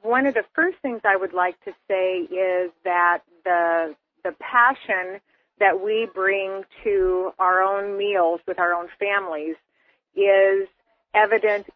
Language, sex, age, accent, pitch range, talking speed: English, female, 40-59, American, 185-225 Hz, 145 wpm